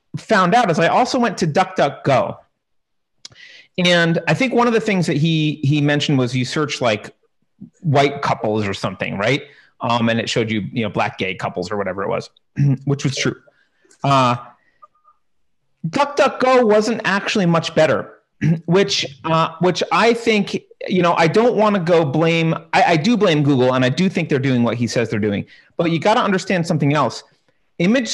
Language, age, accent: English, 30-49, American